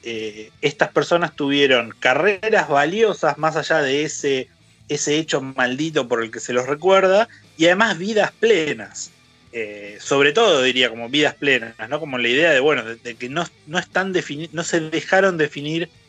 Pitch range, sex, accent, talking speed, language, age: 120-160 Hz, male, Argentinian, 175 wpm, Spanish, 30-49